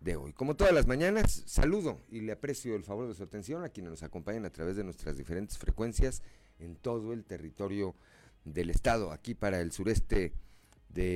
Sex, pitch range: male, 85-115 Hz